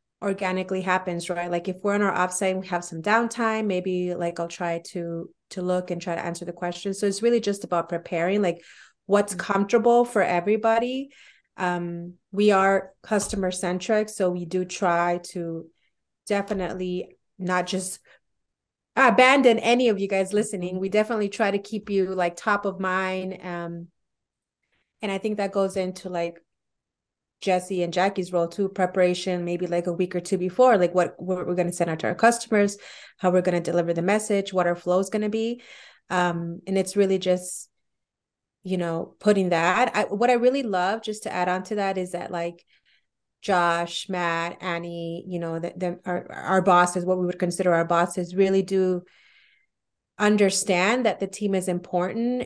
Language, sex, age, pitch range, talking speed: English, female, 30-49, 175-200 Hz, 175 wpm